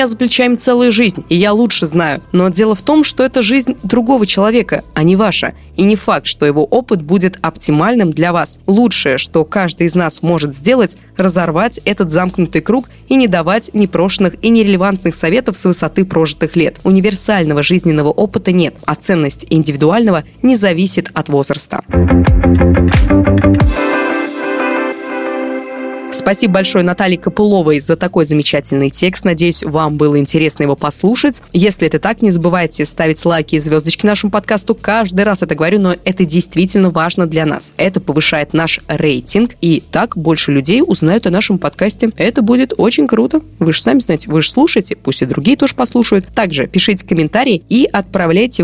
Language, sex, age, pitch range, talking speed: Russian, female, 20-39, 155-210 Hz, 160 wpm